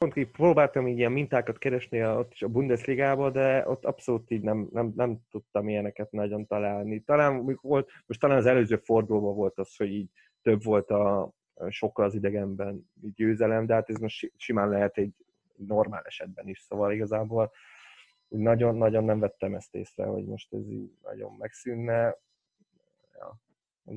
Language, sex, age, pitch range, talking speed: Hungarian, male, 20-39, 105-120 Hz, 155 wpm